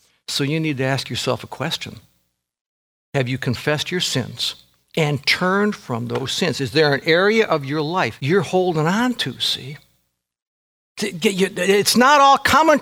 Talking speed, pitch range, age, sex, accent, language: 175 wpm, 125-190 Hz, 60-79, male, American, English